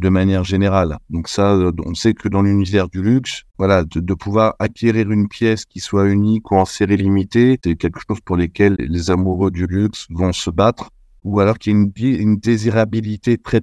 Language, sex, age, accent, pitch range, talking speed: French, male, 50-69, French, 95-115 Hz, 205 wpm